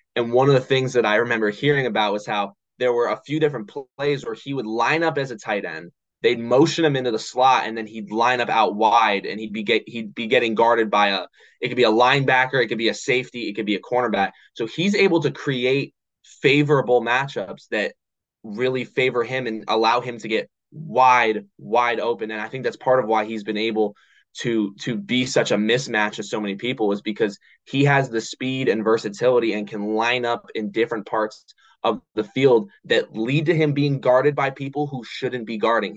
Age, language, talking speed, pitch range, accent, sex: 10-29, English, 225 wpm, 110-140 Hz, American, male